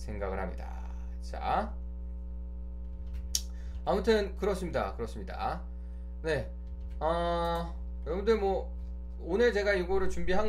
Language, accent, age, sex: Korean, native, 20-39, male